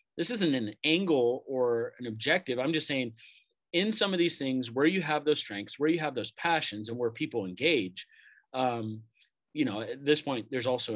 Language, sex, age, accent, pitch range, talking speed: English, male, 30-49, American, 115-155 Hz, 205 wpm